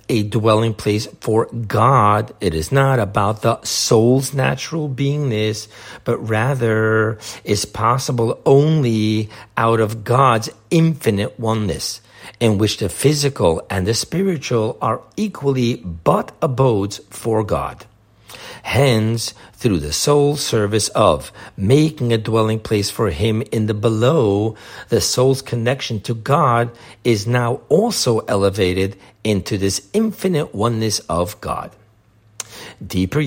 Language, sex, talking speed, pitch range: English, male, 120 wpm, 110-130 Hz